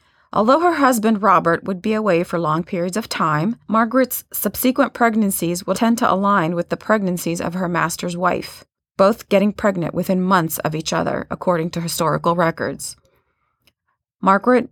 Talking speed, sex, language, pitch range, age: 160 wpm, female, English, 170-215 Hz, 30-49